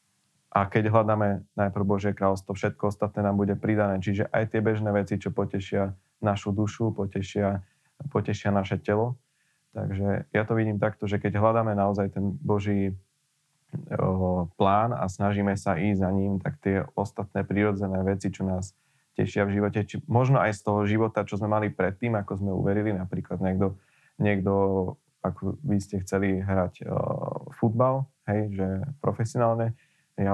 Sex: male